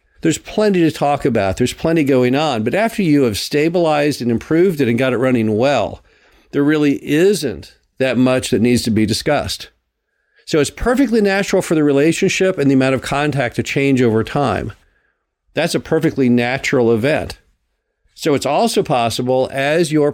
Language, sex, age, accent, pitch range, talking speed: English, male, 50-69, American, 120-155 Hz, 175 wpm